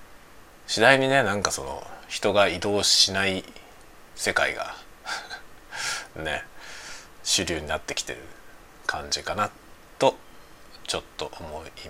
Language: Japanese